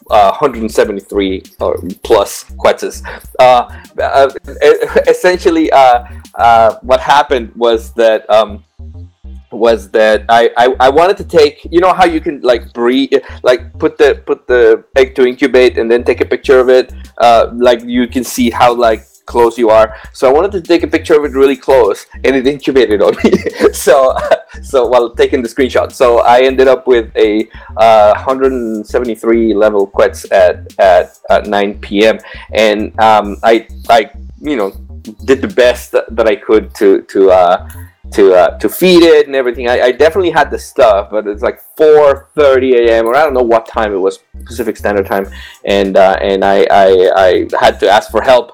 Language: English